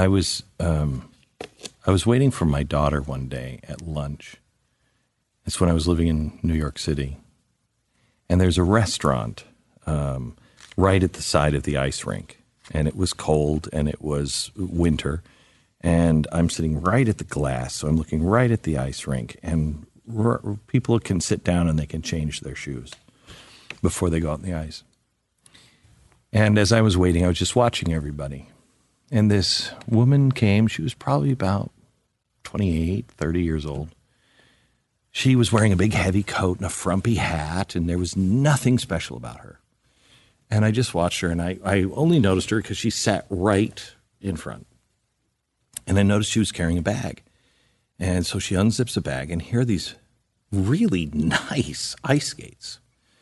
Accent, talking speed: American, 175 wpm